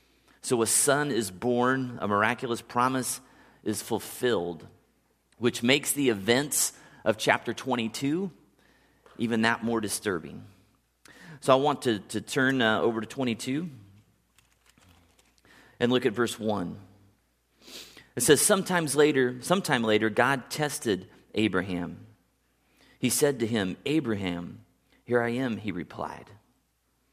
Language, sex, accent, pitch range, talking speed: English, male, American, 105-135 Hz, 120 wpm